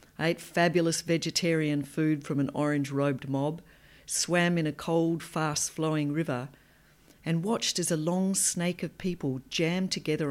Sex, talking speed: female, 140 wpm